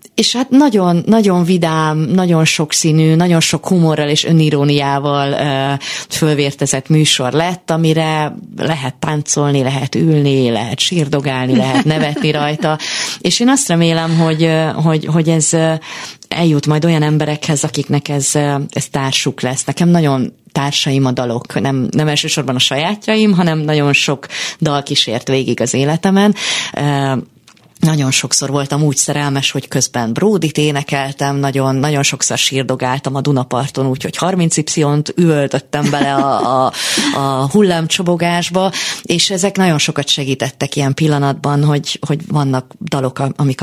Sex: female